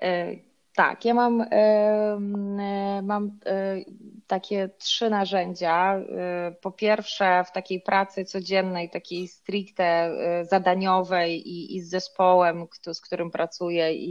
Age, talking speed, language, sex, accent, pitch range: 20-39, 95 wpm, Polish, female, native, 170-195 Hz